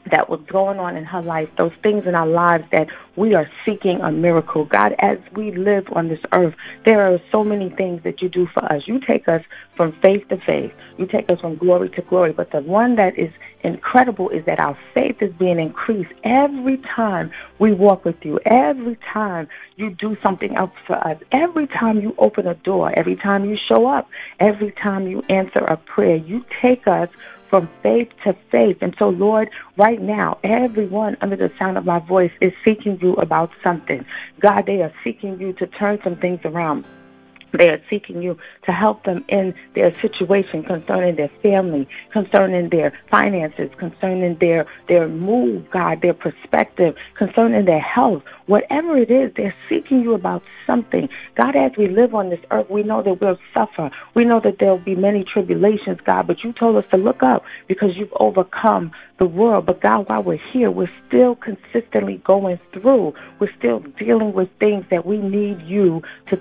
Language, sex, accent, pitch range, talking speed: English, female, American, 175-215 Hz, 195 wpm